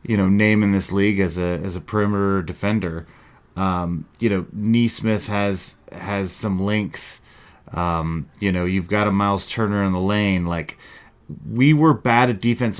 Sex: male